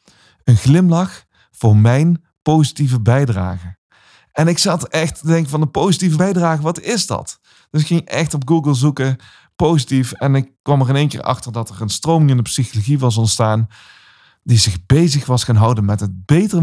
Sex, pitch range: male, 110-150 Hz